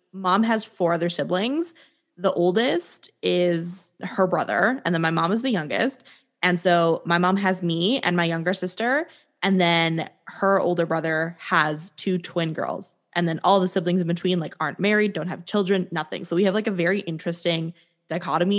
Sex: female